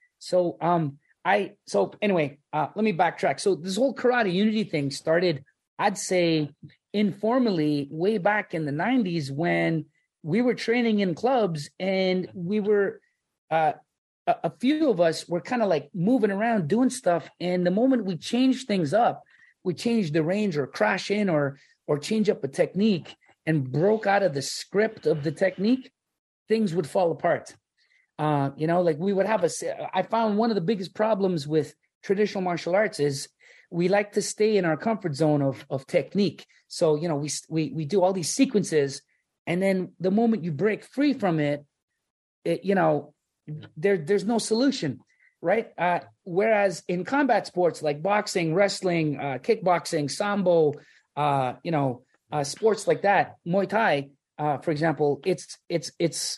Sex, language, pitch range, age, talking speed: male, English, 155-210 Hz, 30-49, 175 wpm